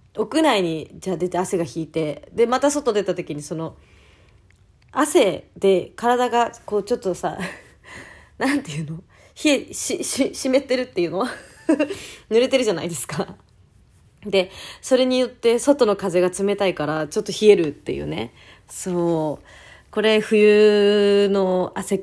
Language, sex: Japanese, female